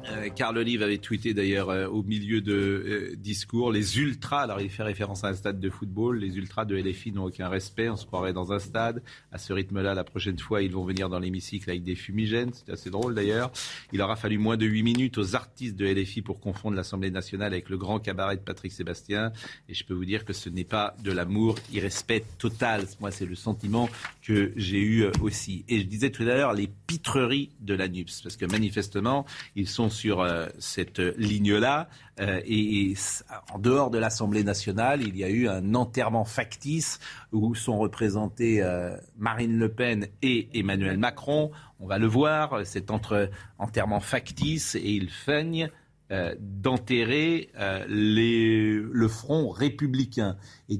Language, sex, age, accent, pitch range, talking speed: French, male, 40-59, French, 100-115 Hz, 190 wpm